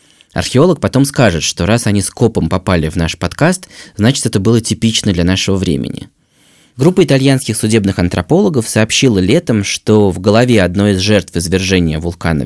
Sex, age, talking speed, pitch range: male, 20-39, 160 wpm, 95-125 Hz